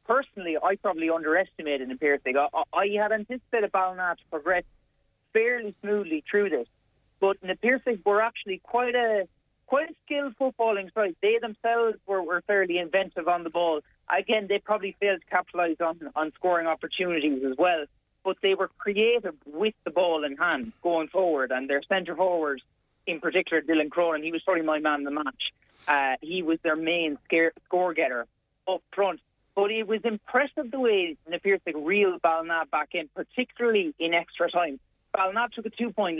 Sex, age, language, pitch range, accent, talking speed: male, 30-49, English, 155-210 Hz, Irish, 165 wpm